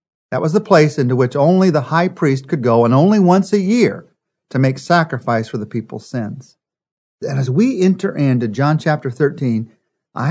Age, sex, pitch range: 40-59, male, 120-165 Hz